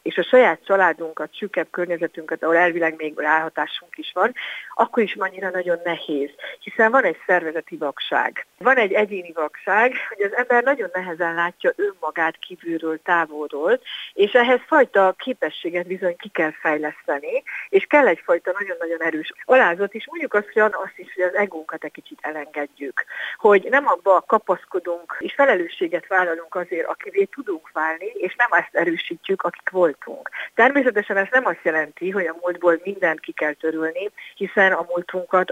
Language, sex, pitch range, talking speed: Hungarian, female, 170-240 Hz, 150 wpm